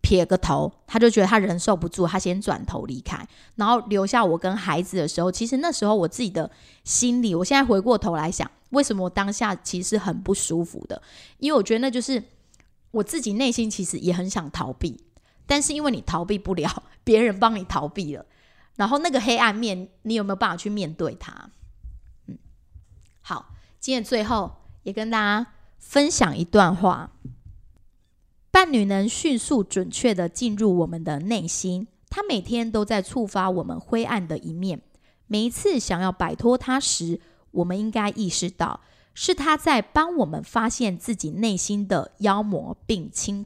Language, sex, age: Chinese, female, 20-39